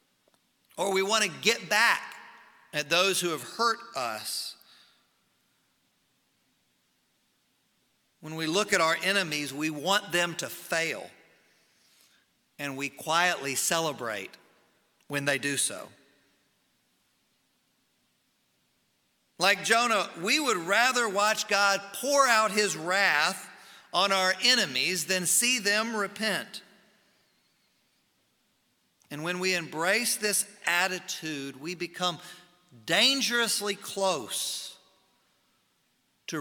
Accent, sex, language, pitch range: American, male, English, 170-215 Hz